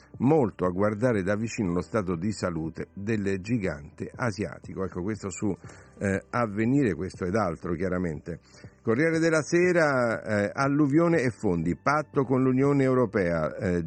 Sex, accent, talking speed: male, native, 145 wpm